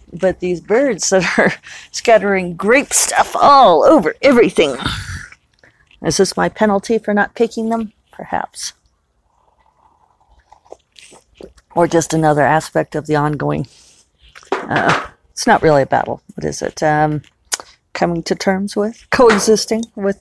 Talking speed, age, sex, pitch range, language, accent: 130 wpm, 40-59, female, 160-210 Hz, English, American